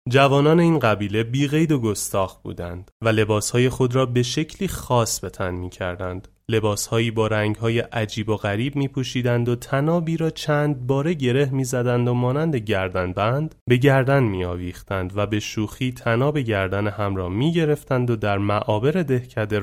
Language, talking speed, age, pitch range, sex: Persian, 165 wpm, 30-49, 105-145 Hz, male